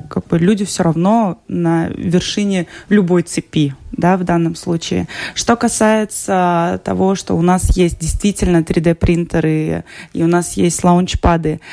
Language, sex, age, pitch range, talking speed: Russian, female, 20-39, 170-200 Hz, 140 wpm